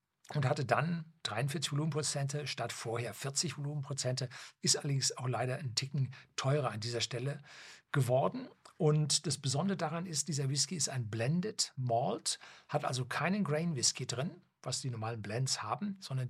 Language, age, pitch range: German, 60-79, 125-155 Hz